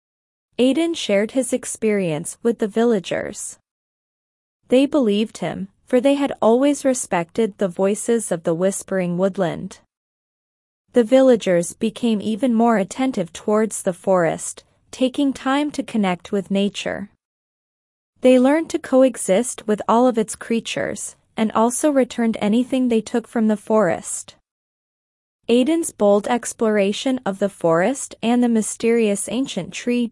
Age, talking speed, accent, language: 20-39, 130 wpm, American, English